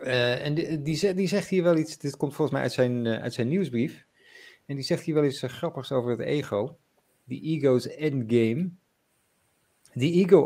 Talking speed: 185 wpm